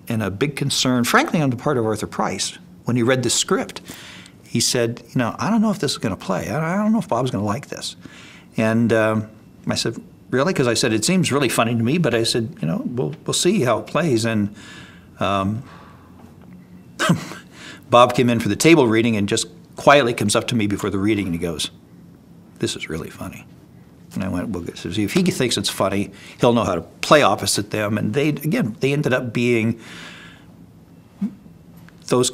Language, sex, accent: English, male, American